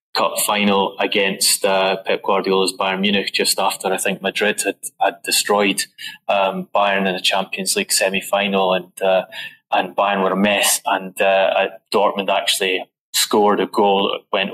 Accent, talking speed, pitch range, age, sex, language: British, 155 wpm, 95-110 Hz, 20-39, male, English